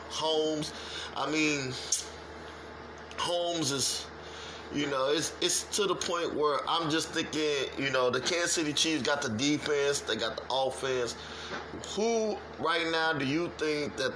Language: English